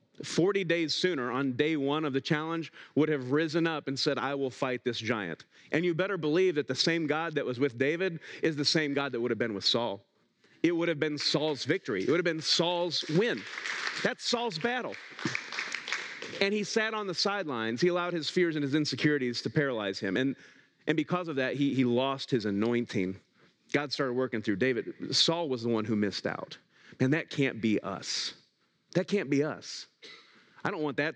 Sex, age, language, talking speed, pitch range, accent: male, 40-59, English, 210 wpm, 130-170 Hz, American